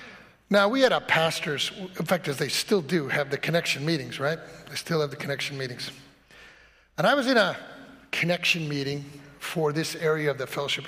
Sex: male